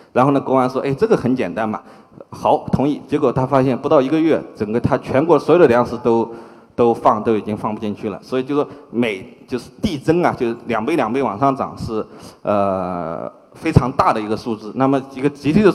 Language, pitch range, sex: Chinese, 105-140 Hz, male